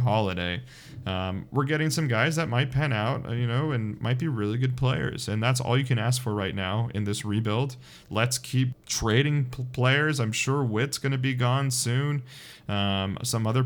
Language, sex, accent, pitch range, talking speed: English, male, American, 110-135 Hz, 200 wpm